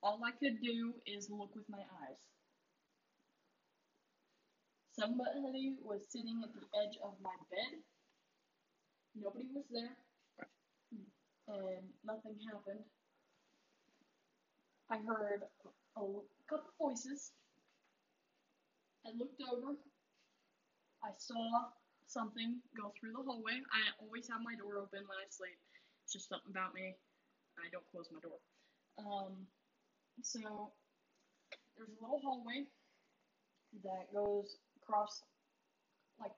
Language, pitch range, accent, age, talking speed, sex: English, 200-245 Hz, American, 10-29, 110 wpm, female